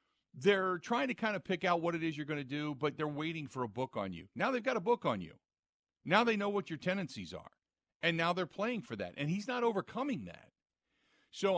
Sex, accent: male, American